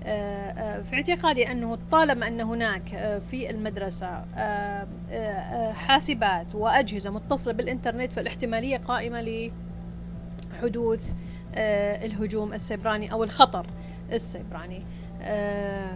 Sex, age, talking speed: female, 30-49, 75 wpm